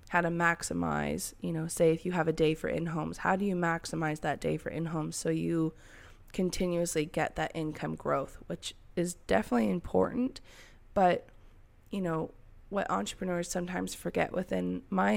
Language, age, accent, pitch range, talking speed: English, 20-39, American, 135-195 Hz, 160 wpm